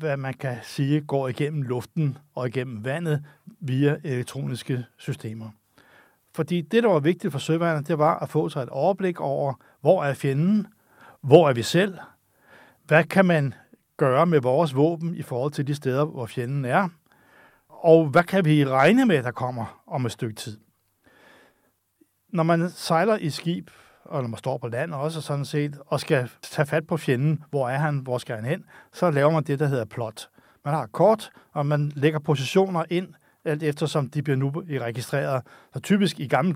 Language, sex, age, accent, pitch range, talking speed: Danish, male, 60-79, native, 135-165 Hz, 190 wpm